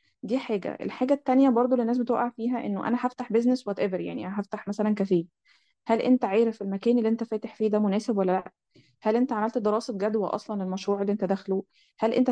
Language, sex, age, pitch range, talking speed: Arabic, female, 20-39, 200-230 Hz, 210 wpm